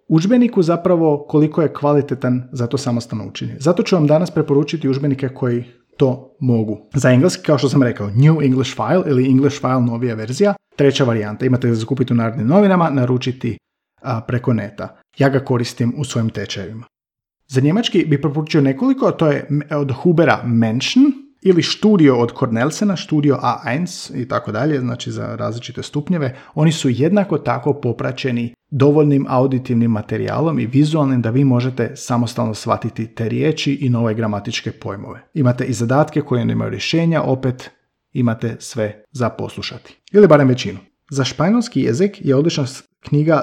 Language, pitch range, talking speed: Croatian, 120-150 Hz, 160 wpm